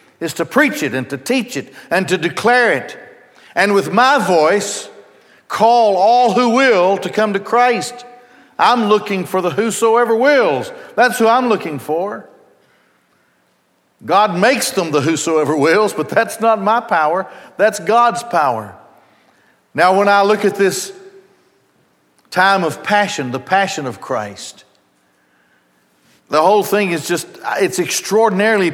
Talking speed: 145 wpm